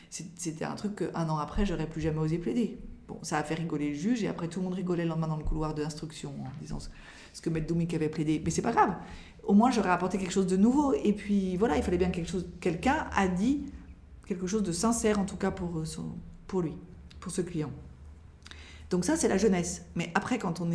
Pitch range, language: 165-210 Hz, French